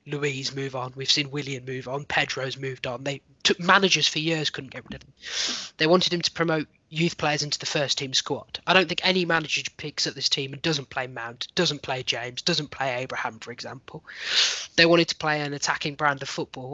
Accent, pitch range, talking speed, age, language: British, 135-165 Hz, 225 wpm, 20-39, English